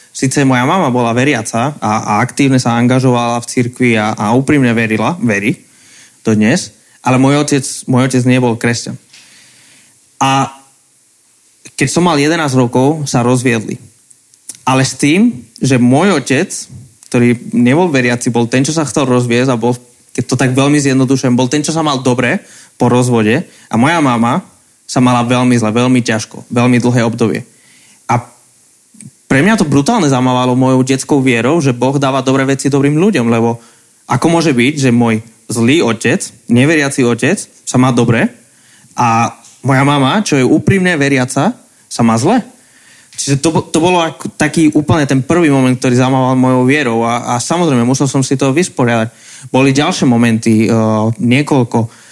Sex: male